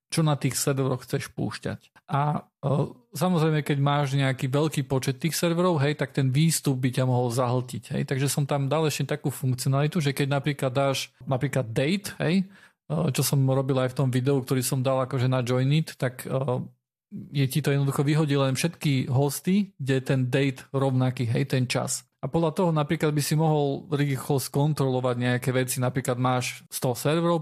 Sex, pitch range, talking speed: male, 135-165 Hz, 185 wpm